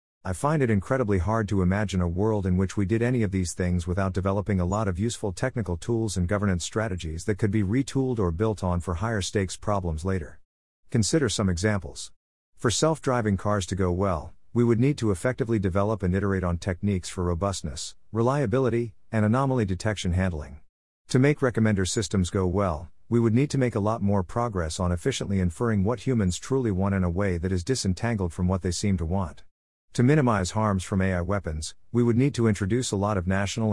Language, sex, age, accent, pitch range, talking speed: English, male, 50-69, American, 90-115 Hz, 205 wpm